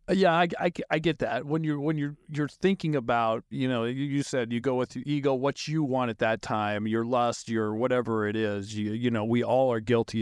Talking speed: 245 wpm